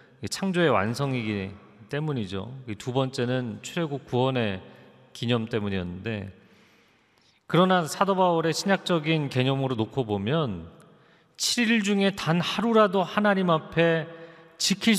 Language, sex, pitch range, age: Korean, male, 125-185 Hz, 40-59